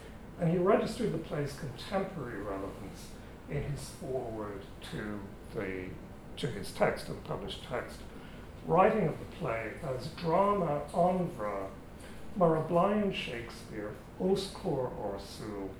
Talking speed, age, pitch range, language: 120 wpm, 60-79, 100-165 Hz, English